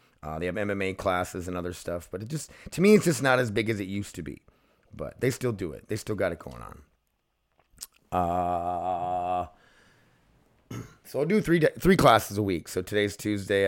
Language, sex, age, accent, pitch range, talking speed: English, male, 30-49, American, 90-115 Hz, 205 wpm